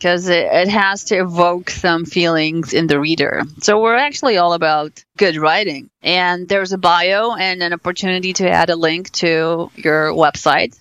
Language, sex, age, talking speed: English, female, 30-49, 180 wpm